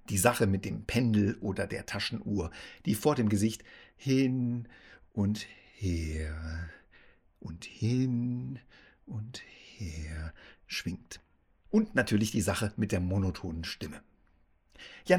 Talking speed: 115 wpm